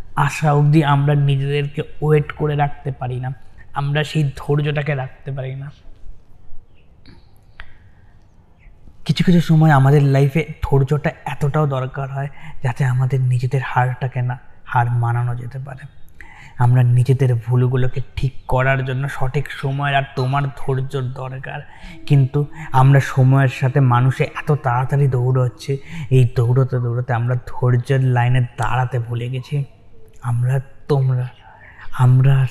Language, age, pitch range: Bengali, 20-39, 120-140 Hz